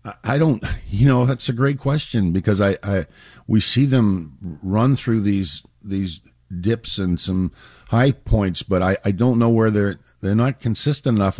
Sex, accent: male, American